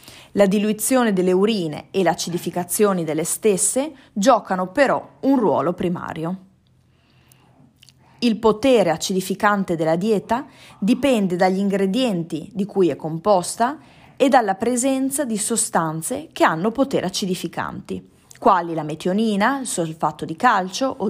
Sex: female